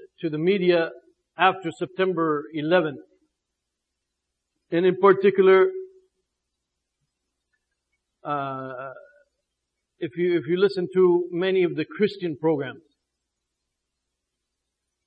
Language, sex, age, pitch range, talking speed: English, male, 60-79, 135-190 Hz, 85 wpm